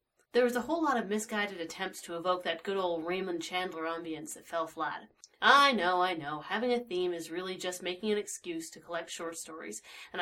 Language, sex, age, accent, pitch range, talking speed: English, female, 30-49, American, 170-225 Hz, 215 wpm